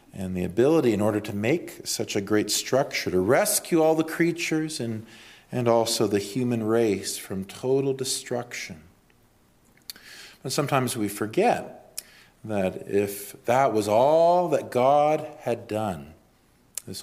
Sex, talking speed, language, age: male, 135 wpm, English, 40-59